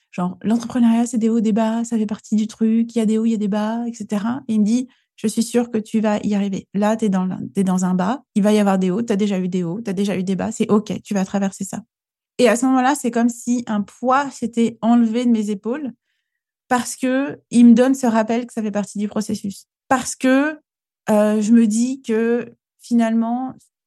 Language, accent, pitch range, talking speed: French, French, 205-235 Hz, 250 wpm